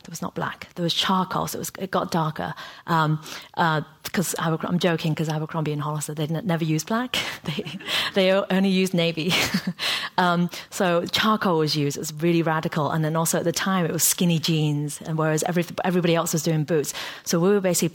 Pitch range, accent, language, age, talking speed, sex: 160-185 Hz, British, English, 40-59, 210 wpm, female